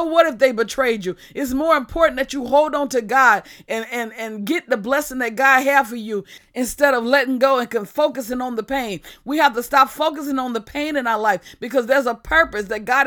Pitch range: 230-290 Hz